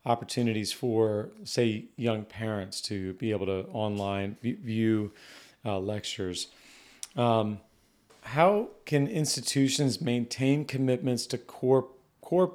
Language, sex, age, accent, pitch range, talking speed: English, male, 40-59, American, 110-130 Hz, 105 wpm